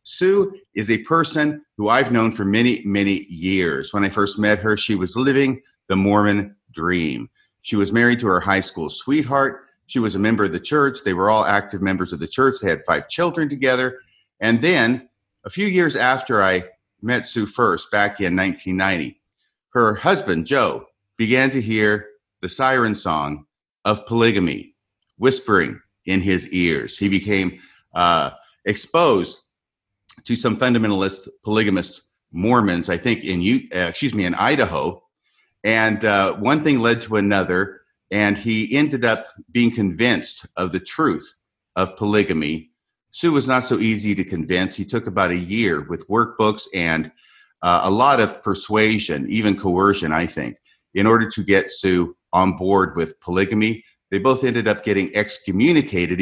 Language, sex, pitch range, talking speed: English, male, 95-120 Hz, 160 wpm